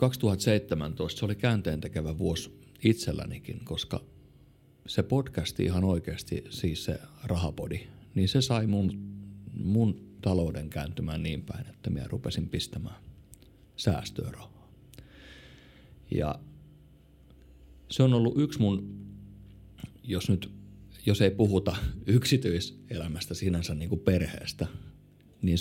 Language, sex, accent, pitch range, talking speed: Finnish, male, native, 85-105 Hz, 105 wpm